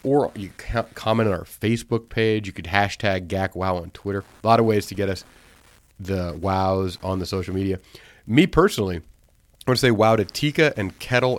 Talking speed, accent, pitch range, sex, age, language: 200 wpm, American, 95-115 Hz, male, 30-49, English